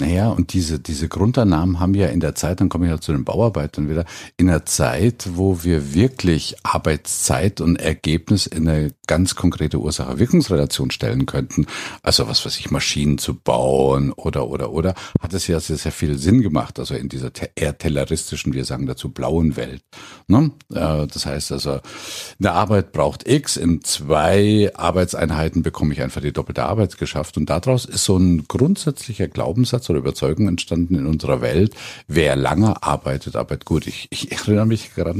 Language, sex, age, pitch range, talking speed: German, male, 50-69, 75-100 Hz, 175 wpm